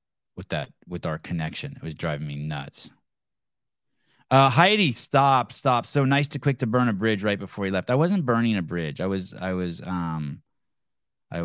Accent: American